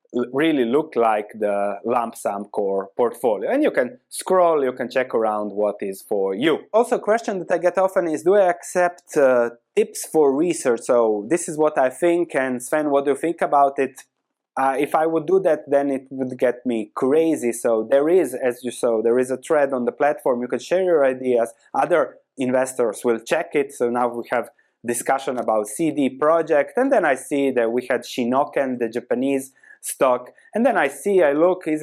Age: 20-39